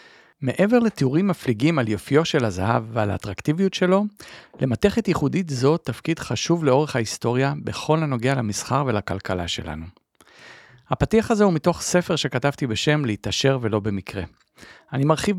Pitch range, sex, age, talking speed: 110-155 Hz, male, 40-59, 135 wpm